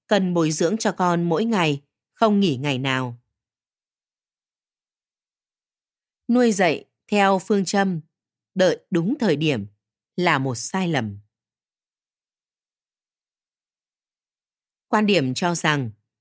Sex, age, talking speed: female, 20-39, 105 wpm